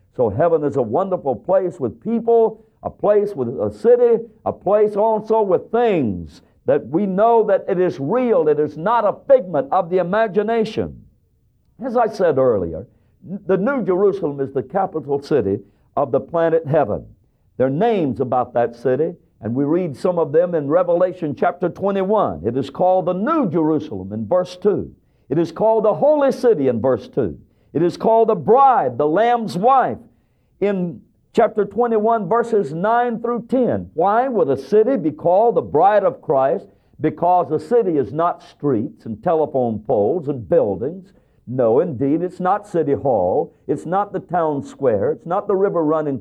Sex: male